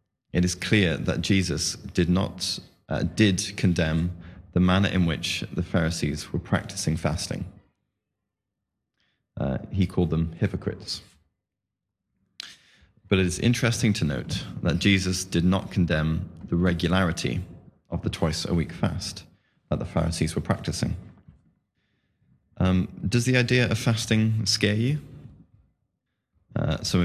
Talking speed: 130 wpm